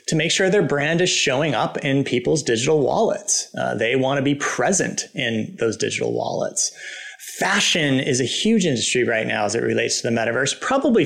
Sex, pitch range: male, 120-170 Hz